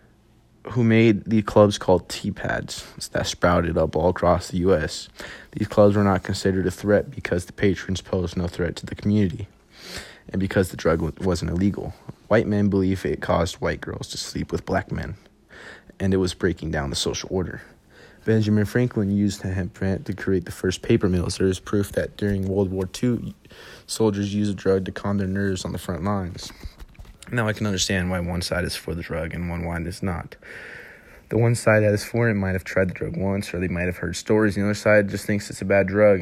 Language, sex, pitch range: English, male, 90-105 Hz